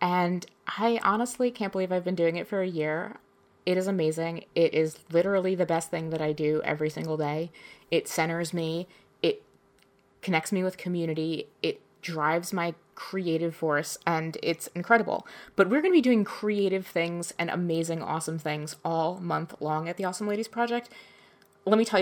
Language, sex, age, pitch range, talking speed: English, female, 20-39, 165-190 Hz, 180 wpm